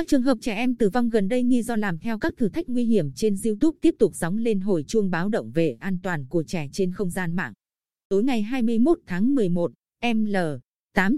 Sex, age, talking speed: female, 20-39, 240 wpm